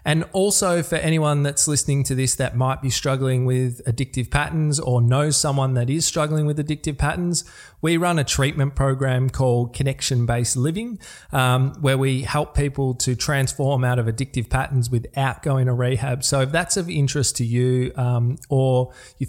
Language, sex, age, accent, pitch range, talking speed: English, male, 20-39, Australian, 125-145 Hz, 180 wpm